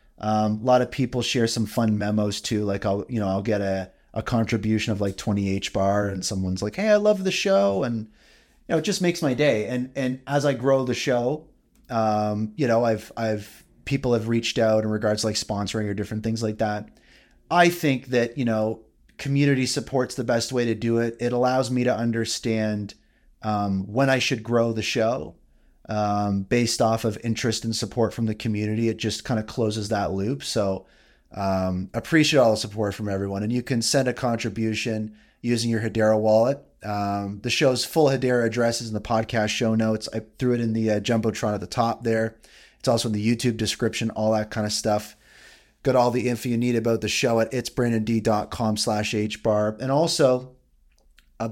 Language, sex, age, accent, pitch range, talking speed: English, male, 30-49, American, 105-125 Hz, 205 wpm